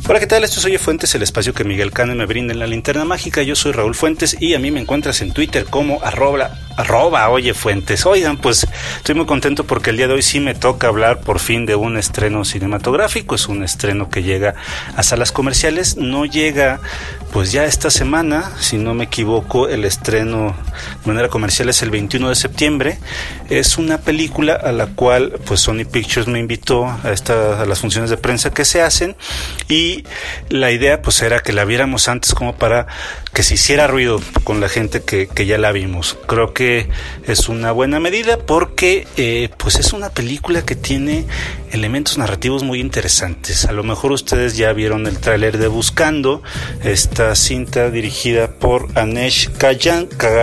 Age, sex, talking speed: 40-59, male, 190 wpm